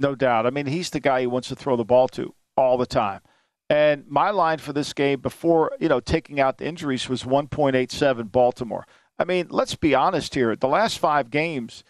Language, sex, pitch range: English, male, 135-180 Hz